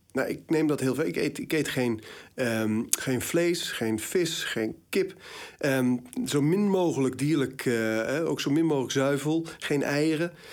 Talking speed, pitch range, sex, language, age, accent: 175 wpm, 125-170 Hz, male, Dutch, 40-59, Dutch